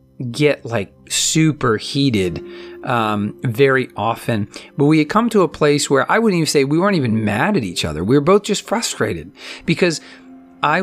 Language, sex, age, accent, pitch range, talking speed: English, male, 40-59, American, 110-145 Hz, 185 wpm